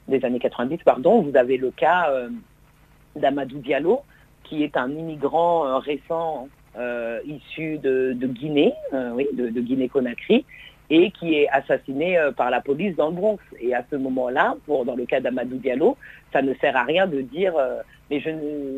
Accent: French